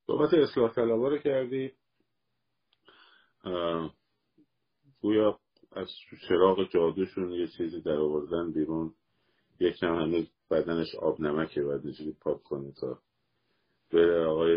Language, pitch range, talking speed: Persian, 85-130 Hz, 105 wpm